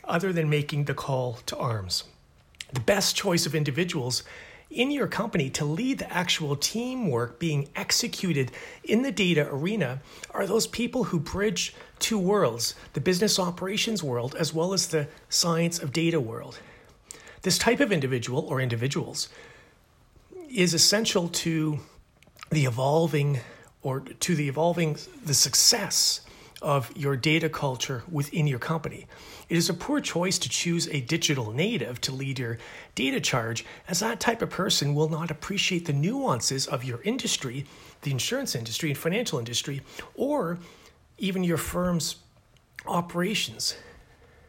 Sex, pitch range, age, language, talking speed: male, 135-185 Hz, 40-59, English, 145 wpm